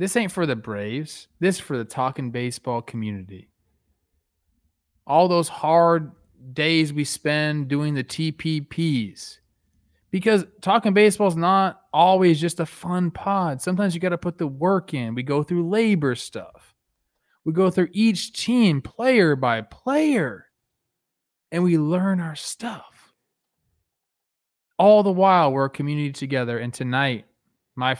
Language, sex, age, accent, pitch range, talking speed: English, male, 20-39, American, 125-180 Hz, 145 wpm